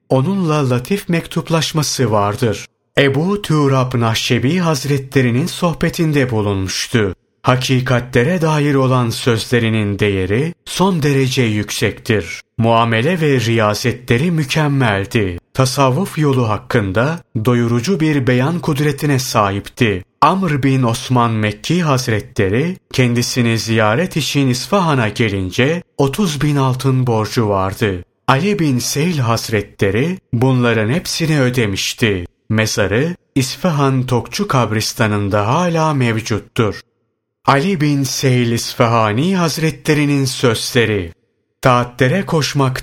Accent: native